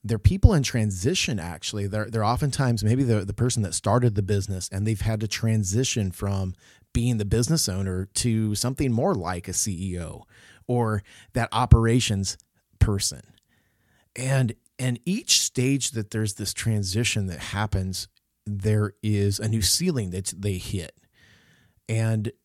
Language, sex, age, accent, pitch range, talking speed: English, male, 30-49, American, 100-125 Hz, 145 wpm